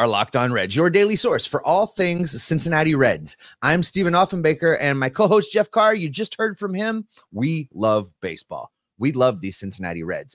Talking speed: 190 wpm